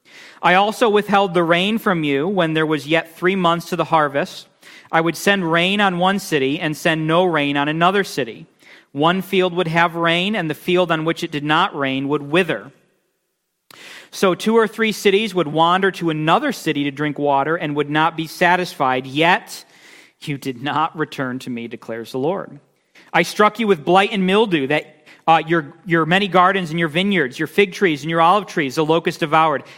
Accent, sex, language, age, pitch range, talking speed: American, male, English, 40-59, 155-195 Hz, 200 wpm